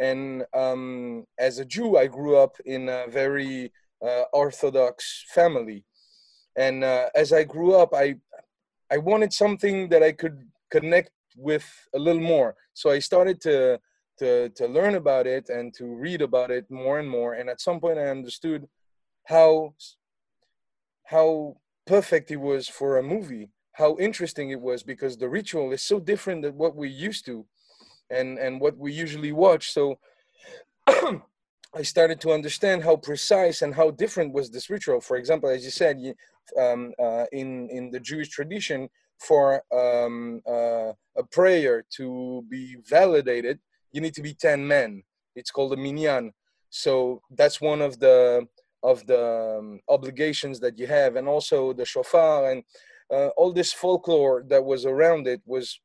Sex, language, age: male, English, 30-49